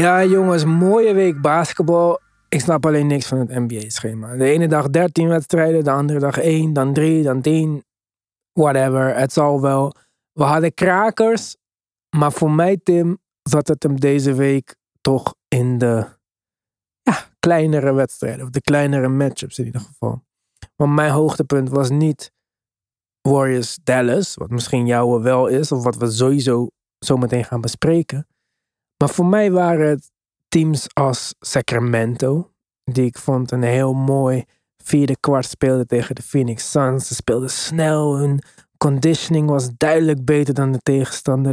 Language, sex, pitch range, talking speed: Dutch, male, 125-155 Hz, 150 wpm